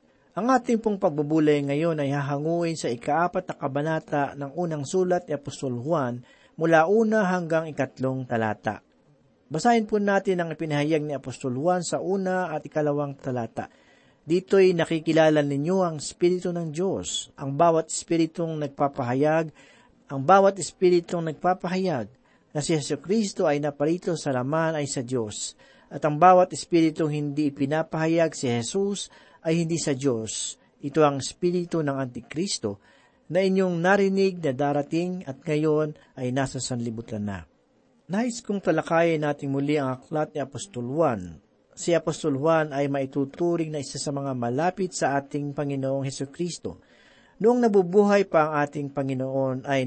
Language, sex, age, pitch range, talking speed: Filipino, male, 50-69, 140-175 Hz, 145 wpm